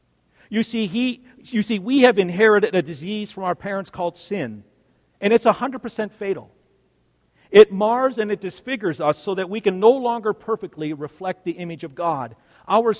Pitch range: 130-215 Hz